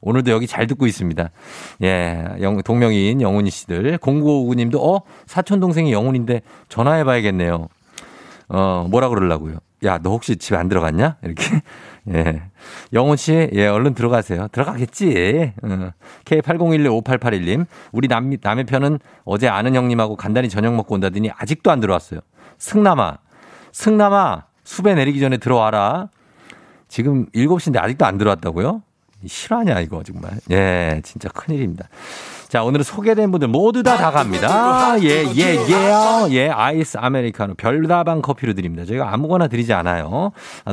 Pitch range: 105-165 Hz